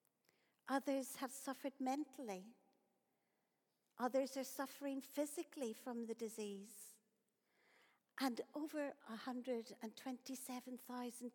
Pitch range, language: 220-275 Hz, English